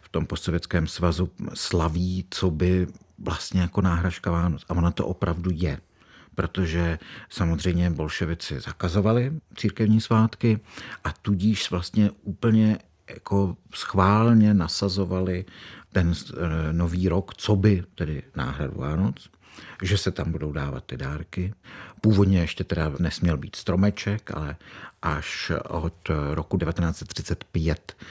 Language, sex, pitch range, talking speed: Czech, male, 80-100 Hz, 115 wpm